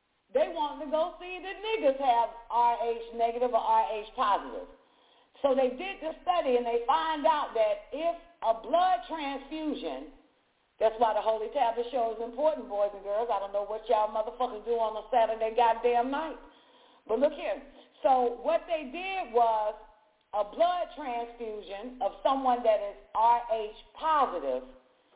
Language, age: English, 50-69